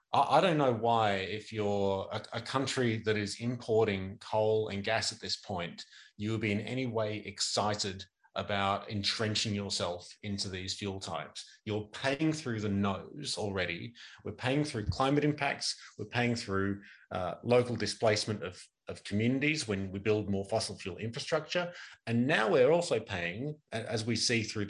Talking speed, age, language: 165 wpm, 30-49, English